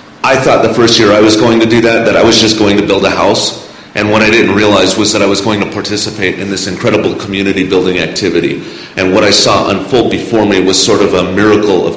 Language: English